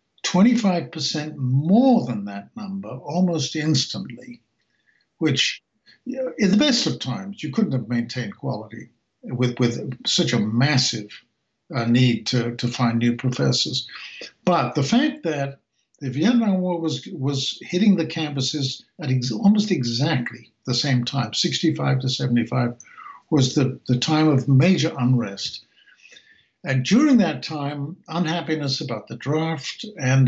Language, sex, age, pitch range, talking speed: English, male, 60-79, 125-165 Hz, 135 wpm